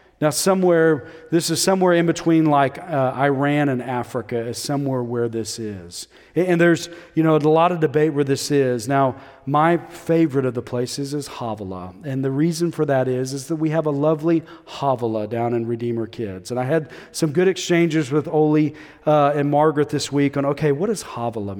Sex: male